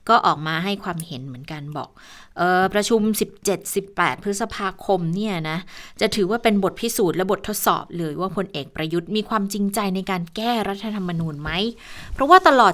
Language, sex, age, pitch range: Thai, female, 20-39, 180-235 Hz